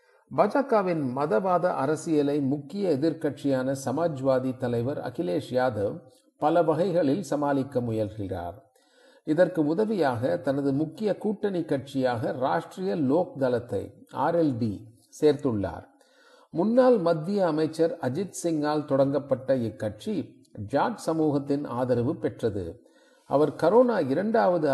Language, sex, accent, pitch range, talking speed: Tamil, male, native, 130-170 Hz, 90 wpm